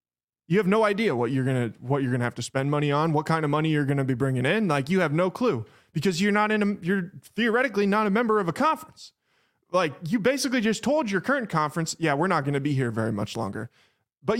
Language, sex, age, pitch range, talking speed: English, male, 20-39, 140-205 Hz, 245 wpm